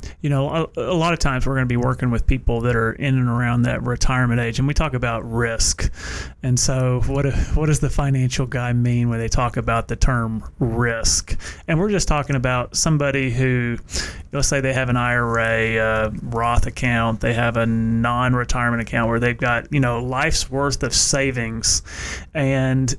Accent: American